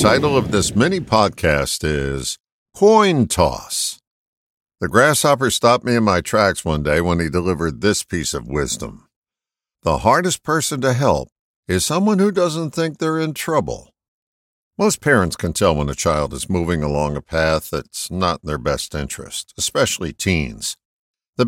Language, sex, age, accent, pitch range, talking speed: English, male, 60-79, American, 80-120 Hz, 155 wpm